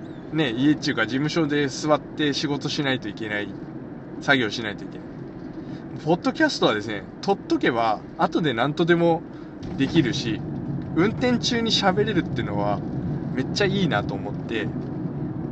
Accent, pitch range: native, 135-165 Hz